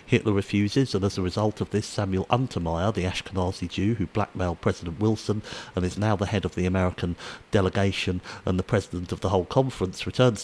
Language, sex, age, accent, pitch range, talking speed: English, male, 50-69, British, 95-115 Hz, 195 wpm